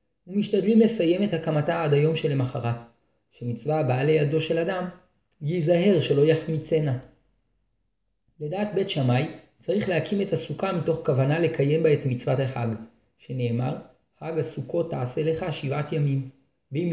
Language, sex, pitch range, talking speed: Hebrew, male, 140-185 Hz, 130 wpm